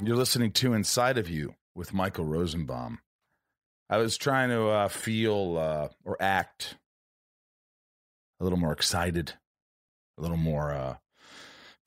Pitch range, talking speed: 80-110 Hz, 130 wpm